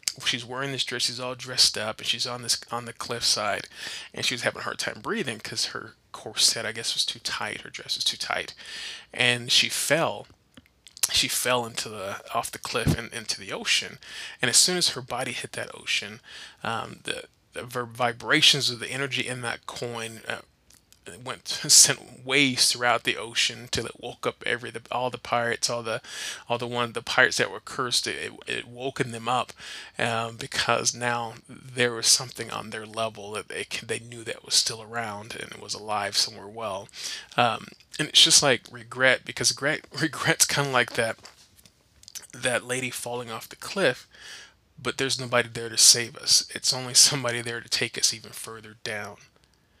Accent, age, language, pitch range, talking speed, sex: American, 20-39, English, 115-130 Hz, 195 wpm, male